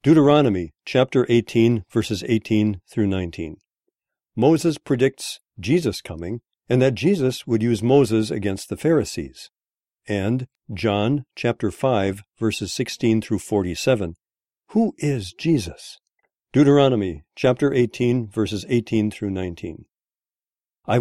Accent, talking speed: American, 110 wpm